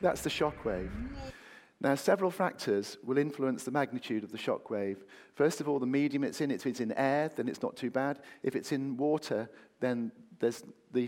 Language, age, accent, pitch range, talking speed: English, 40-59, British, 110-135 Hz, 205 wpm